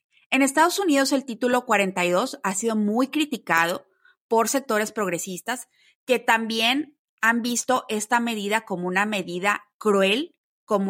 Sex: female